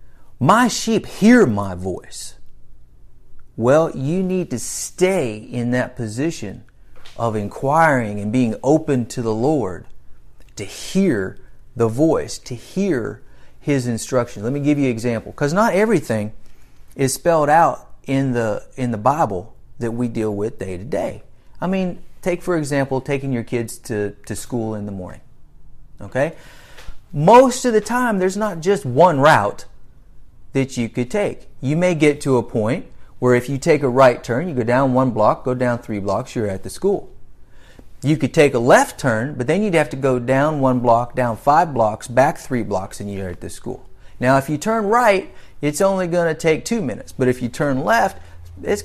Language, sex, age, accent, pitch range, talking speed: English, male, 40-59, American, 110-160 Hz, 185 wpm